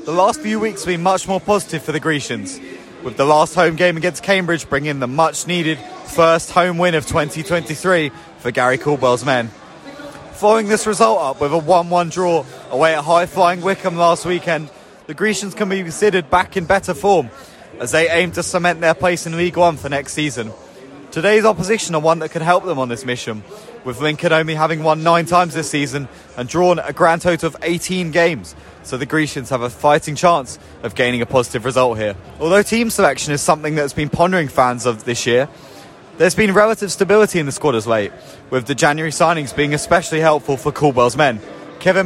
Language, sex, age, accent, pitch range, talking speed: English, male, 20-39, British, 140-175 Hz, 200 wpm